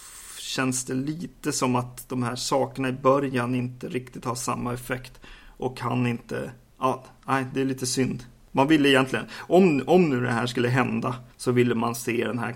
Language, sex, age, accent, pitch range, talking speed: Swedish, male, 30-49, native, 120-130 Hz, 190 wpm